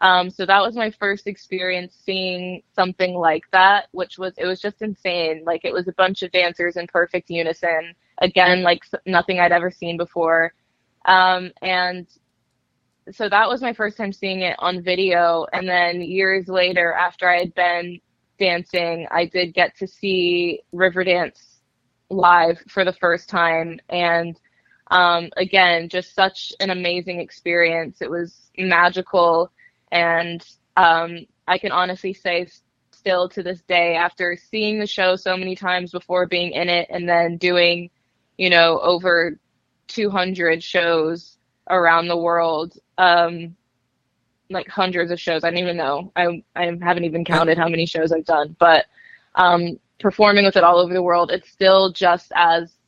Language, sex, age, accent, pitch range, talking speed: English, female, 20-39, American, 170-185 Hz, 160 wpm